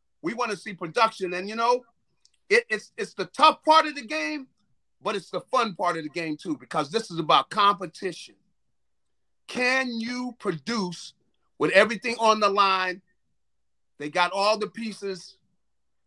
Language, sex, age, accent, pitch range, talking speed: English, male, 40-59, American, 185-255 Hz, 165 wpm